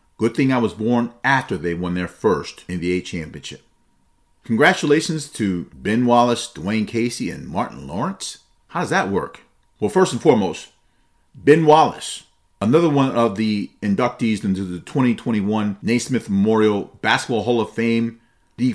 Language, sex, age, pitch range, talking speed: English, male, 40-59, 105-140 Hz, 145 wpm